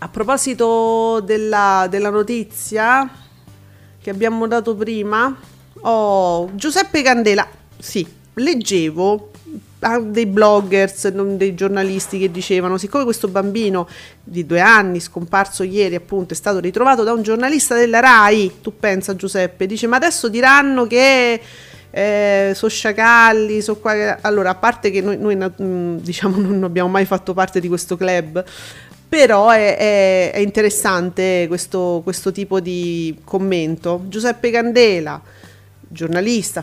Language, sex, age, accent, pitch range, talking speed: Italian, female, 40-59, native, 185-235 Hz, 135 wpm